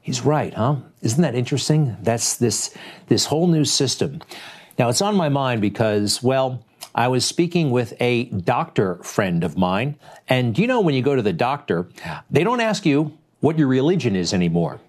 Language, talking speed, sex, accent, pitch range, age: English, 185 wpm, male, American, 115-155 Hz, 50-69